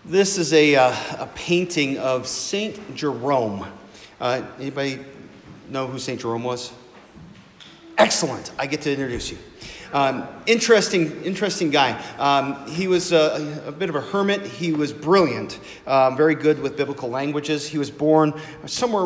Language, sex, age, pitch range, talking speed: English, male, 40-59, 130-160 Hz, 150 wpm